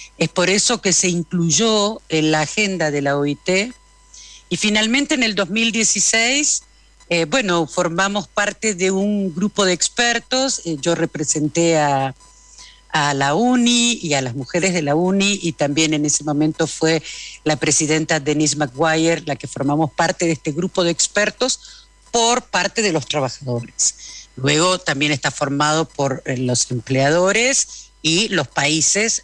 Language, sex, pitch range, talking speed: Spanish, female, 155-210 Hz, 150 wpm